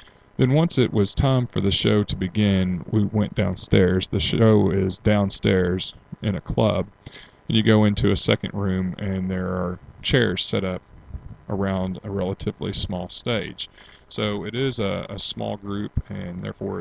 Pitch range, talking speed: 95-110 Hz, 165 wpm